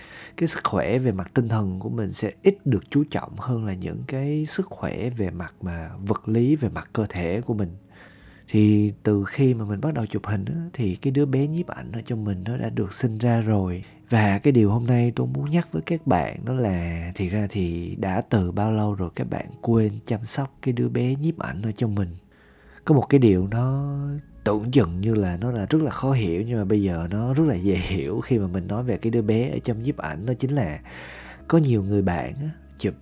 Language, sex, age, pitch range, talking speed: Vietnamese, male, 20-39, 100-140 Hz, 245 wpm